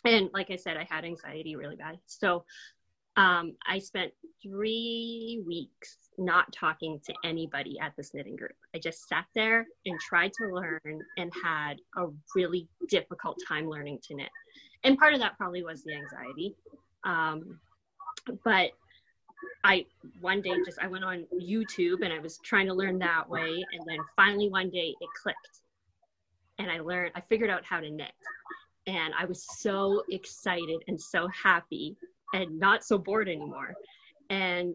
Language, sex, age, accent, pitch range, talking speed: English, female, 20-39, American, 170-225 Hz, 165 wpm